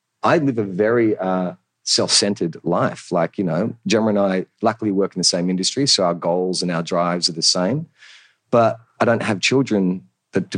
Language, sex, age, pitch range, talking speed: English, male, 30-49, 85-115 Hz, 200 wpm